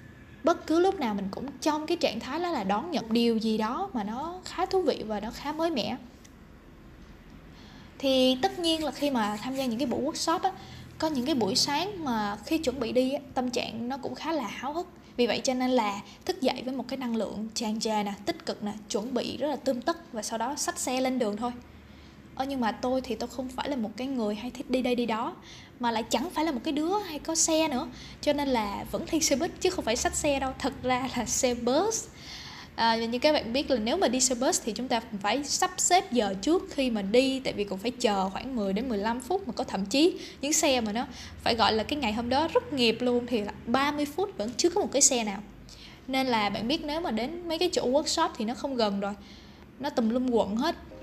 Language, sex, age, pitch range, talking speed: Vietnamese, female, 10-29, 230-300 Hz, 260 wpm